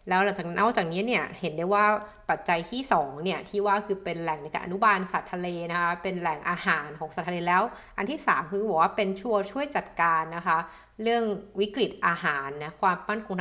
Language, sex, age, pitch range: Thai, female, 20-39, 170-205 Hz